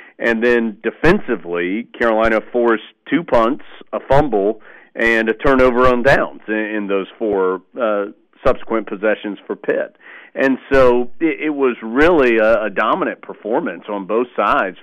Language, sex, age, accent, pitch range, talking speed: English, male, 40-59, American, 110-130 Hz, 135 wpm